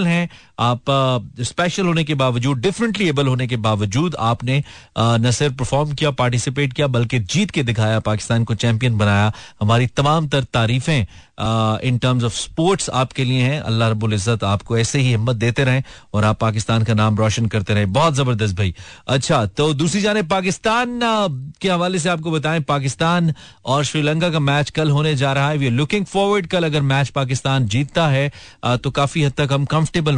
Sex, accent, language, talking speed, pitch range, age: male, native, Hindi, 115 wpm, 115-145 Hz, 40-59